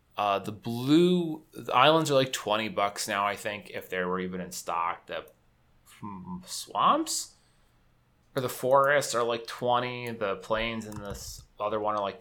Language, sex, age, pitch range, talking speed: English, male, 20-39, 90-115 Hz, 170 wpm